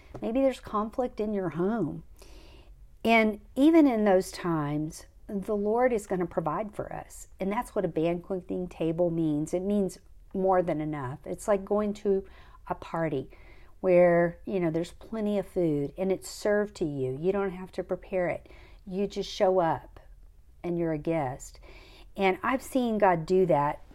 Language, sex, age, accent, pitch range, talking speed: English, female, 50-69, American, 160-200 Hz, 175 wpm